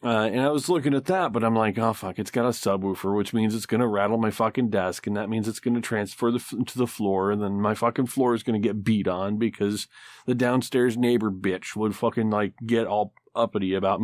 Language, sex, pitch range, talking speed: English, male, 105-125 Hz, 250 wpm